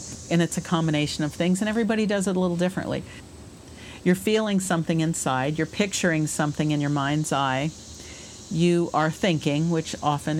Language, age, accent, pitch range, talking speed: English, 50-69, American, 135-175 Hz, 165 wpm